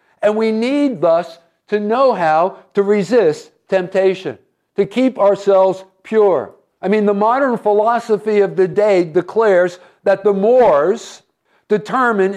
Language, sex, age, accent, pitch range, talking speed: English, male, 50-69, American, 195-250 Hz, 130 wpm